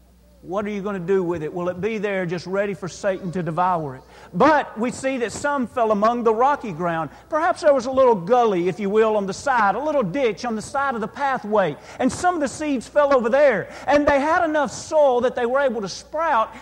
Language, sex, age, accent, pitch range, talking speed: English, male, 40-59, American, 150-250 Hz, 250 wpm